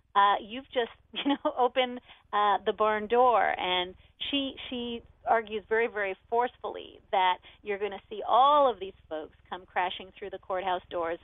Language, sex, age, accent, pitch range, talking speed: English, female, 40-59, American, 190-245 Hz, 170 wpm